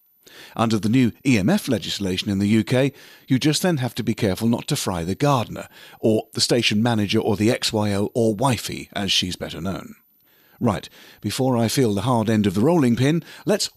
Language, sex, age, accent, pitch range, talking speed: English, male, 50-69, British, 100-155 Hz, 195 wpm